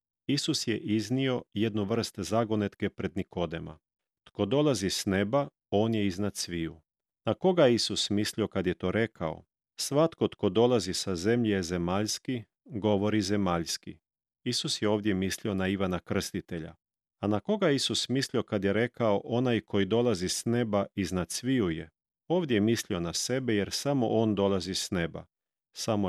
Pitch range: 95-120 Hz